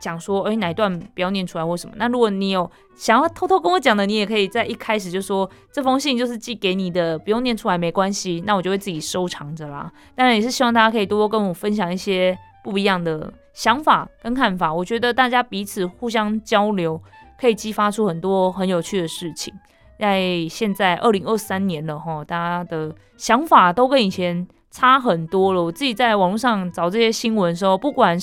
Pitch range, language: 180-235 Hz, Chinese